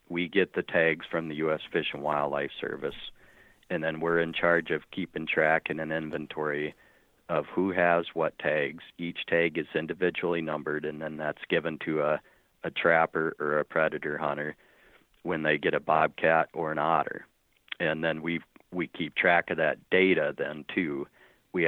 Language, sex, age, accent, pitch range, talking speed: English, male, 40-59, American, 75-85 Hz, 175 wpm